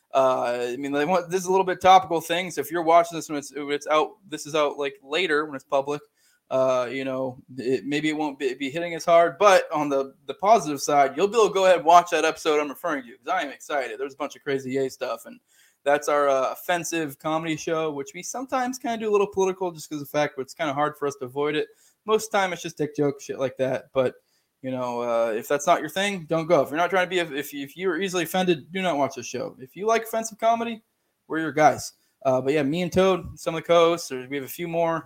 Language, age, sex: English, 20-39, male